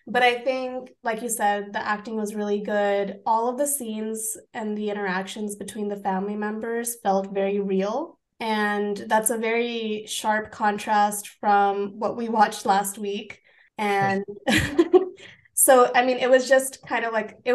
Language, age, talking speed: English, 20-39, 165 wpm